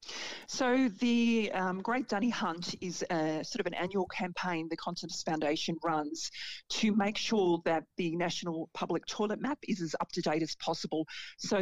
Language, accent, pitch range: English, Australian, 165-205 Hz